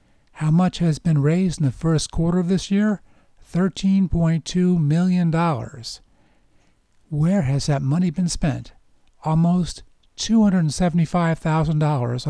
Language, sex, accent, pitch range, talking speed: English, male, American, 135-175 Hz, 105 wpm